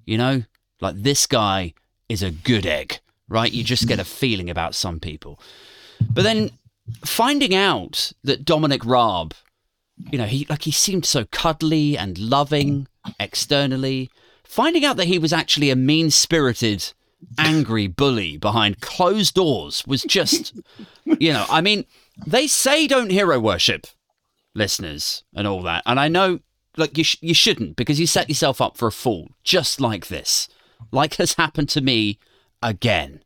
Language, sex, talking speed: English, male, 160 wpm